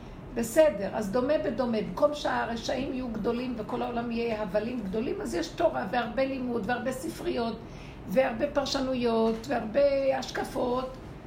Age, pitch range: 50-69, 235-300 Hz